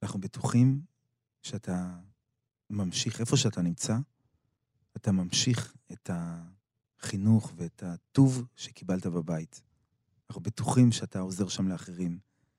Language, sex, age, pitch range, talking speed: Hebrew, male, 30-49, 95-120 Hz, 100 wpm